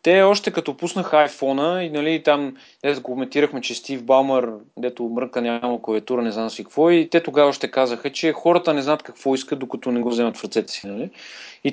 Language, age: Bulgarian, 30-49